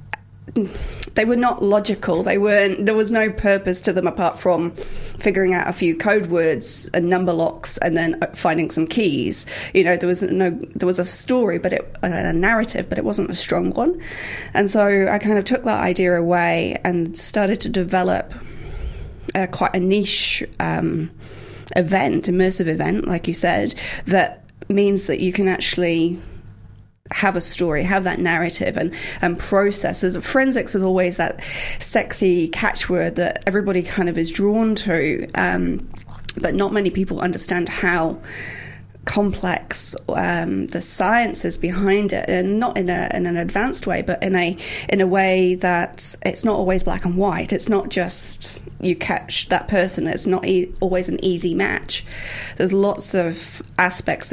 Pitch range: 170-200 Hz